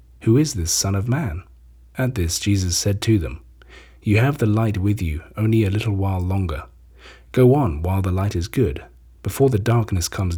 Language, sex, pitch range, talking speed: English, male, 85-110 Hz, 195 wpm